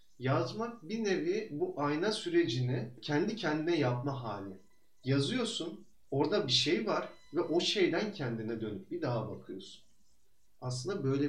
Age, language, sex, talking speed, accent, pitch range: 40-59, Turkish, male, 135 wpm, native, 120-170 Hz